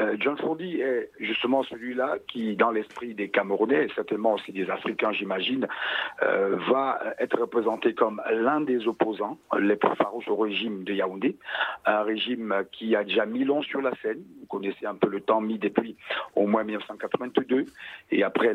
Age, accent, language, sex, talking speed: 50-69, French, French, male, 175 wpm